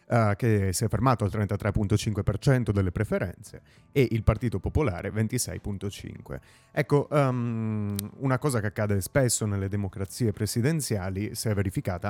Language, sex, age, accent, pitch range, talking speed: Italian, male, 30-49, native, 95-115 Hz, 125 wpm